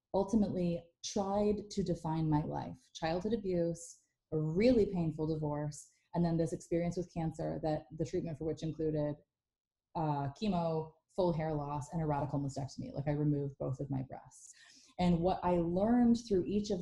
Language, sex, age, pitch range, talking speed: English, female, 30-49, 165-230 Hz, 170 wpm